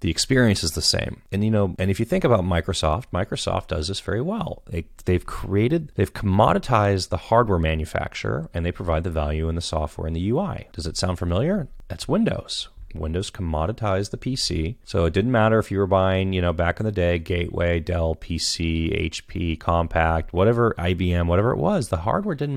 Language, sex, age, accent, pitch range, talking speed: English, male, 30-49, American, 80-100 Hz, 195 wpm